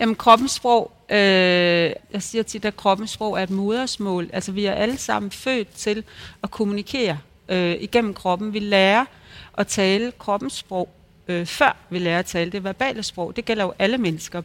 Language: Danish